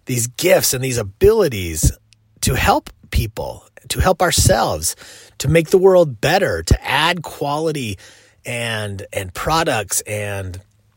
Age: 30-49